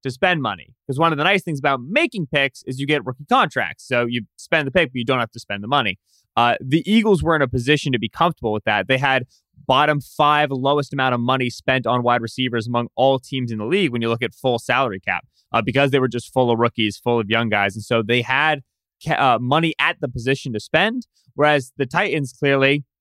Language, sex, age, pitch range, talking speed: English, male, 20-39, 120-155 Hz, 245 wpm